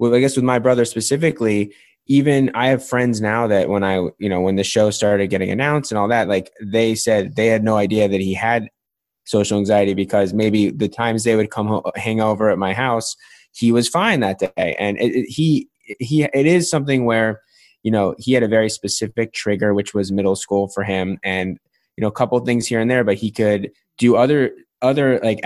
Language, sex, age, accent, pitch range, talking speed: English, male, 20-39, American, 105-125 Hz, 225 wpm